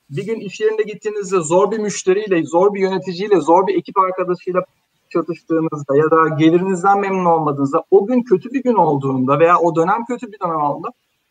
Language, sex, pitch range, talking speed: Turkish, male, 160-225 Hz, 180 wpm